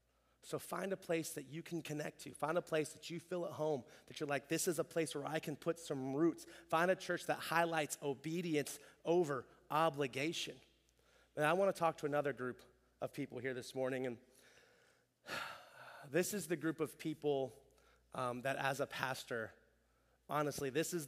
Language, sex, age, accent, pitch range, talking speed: English, male, 30-49, American, 130-155 Hz, 190 wpm